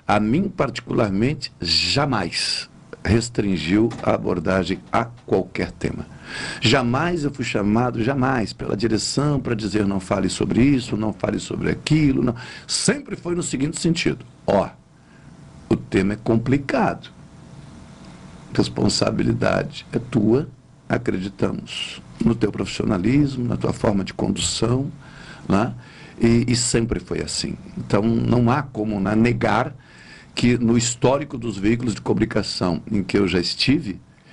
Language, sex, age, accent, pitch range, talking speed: Portuguese, male, 60-79, Brazilian, 110-145 Hz, 130 wpm